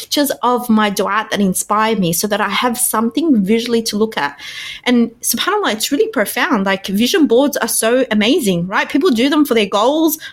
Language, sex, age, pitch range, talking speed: English, female, 20-39, 210-275 Hz, 190 wpm